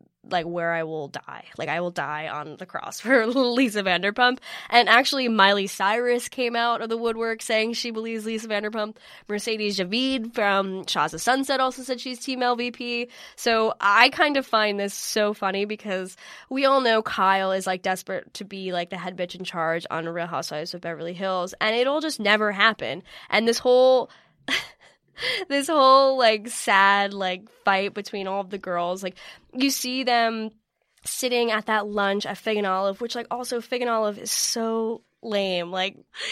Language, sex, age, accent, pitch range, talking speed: English, female, 10-29, American, 195-250 Hz, 180 wpm